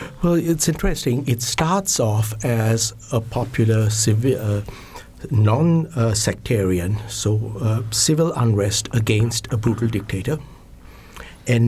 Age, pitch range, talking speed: 60-79, 100-125 Hz, 110 wpm